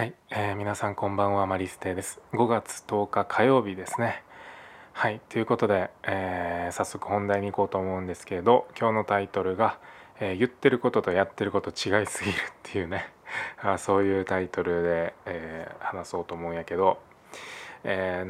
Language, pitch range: Japanese, 90-105 Hz